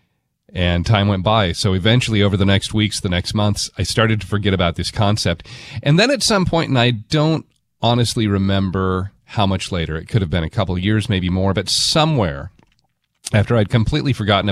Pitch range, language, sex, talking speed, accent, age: 95-125 Hz, English, male, 205 wpm, American, 40-59